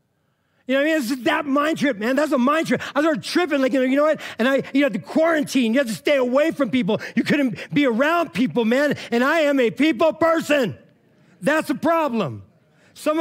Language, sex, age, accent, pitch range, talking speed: English, male, 40-59, American, 180-275 Hz, 245 wpm